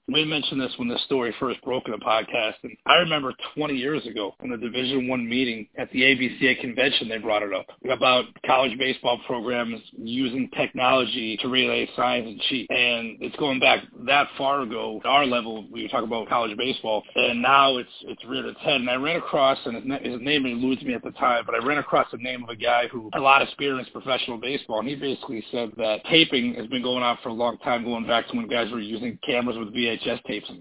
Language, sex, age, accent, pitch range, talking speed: English, male, 30-49, American, 120-135 Hz, 235 wpm